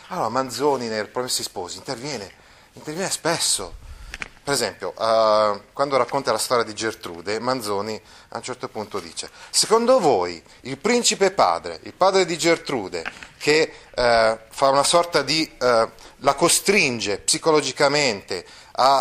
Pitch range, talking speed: 115-150 Hz, 135 wpm